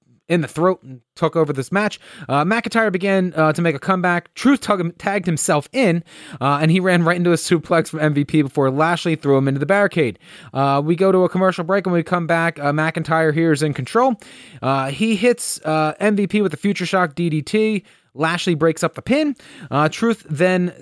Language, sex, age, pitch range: English, male, 30-49, 135-185 Hz